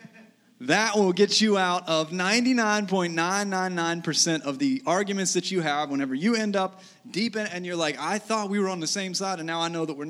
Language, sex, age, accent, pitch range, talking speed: English, male, 30-49, American, 155-200 Hz, 215 wpm